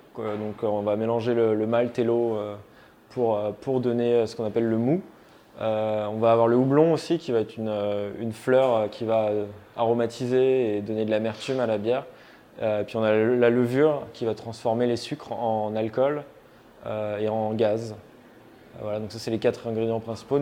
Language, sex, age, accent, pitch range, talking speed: French, male, 20-39, French, 110-125 Hz, 195 wpm